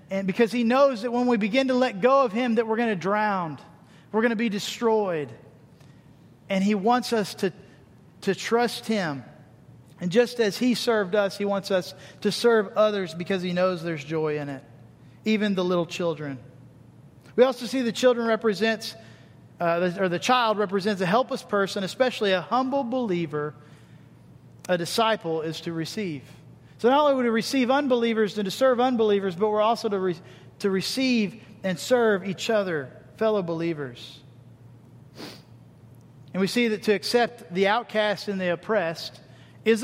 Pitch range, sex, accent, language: 150-230 Hz, male, American, English